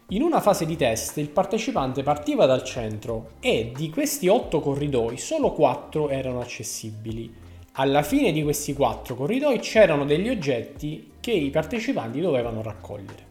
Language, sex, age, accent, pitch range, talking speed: Italian, male, 20-39, native, 125-175 Hz, 150 wpm